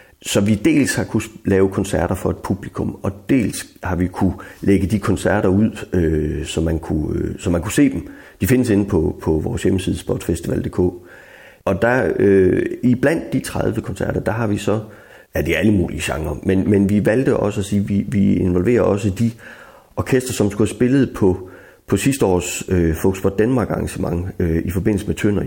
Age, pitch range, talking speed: 30-49, 90-105 Hz, 200 wpm